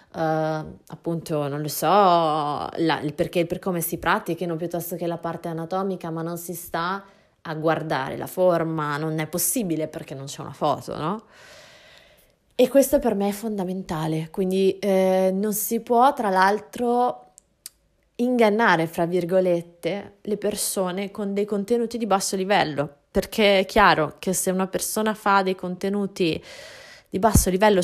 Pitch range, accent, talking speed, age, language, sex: 165-200 Hz, native, 155 wpm, 20-39, Italian, female